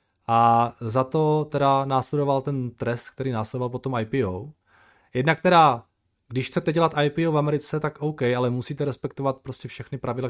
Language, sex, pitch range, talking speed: Czech, male, 125-160 Hz, 155 wpm